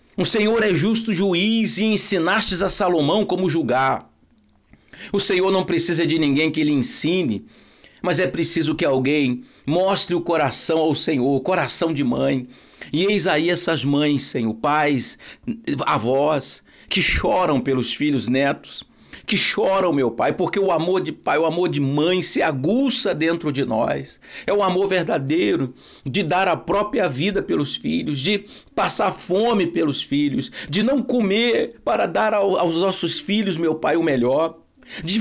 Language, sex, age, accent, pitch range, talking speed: Portuguese, male, 60-79, Brazilian, 160-205 Hz, 160 wpm